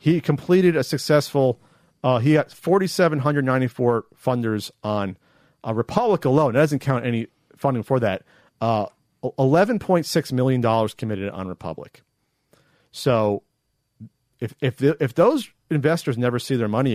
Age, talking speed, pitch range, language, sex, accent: 40-59, 150 wpm, 115-160 Hz, English, male, American